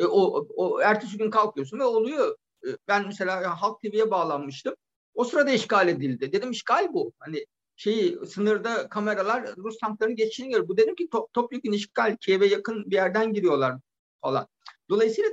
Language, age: Turkish, 50-69